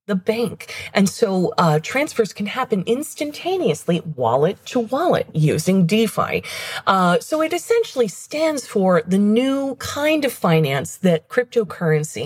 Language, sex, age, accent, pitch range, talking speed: English, female, 30-49, American, 160-225 Hz, 130 wpm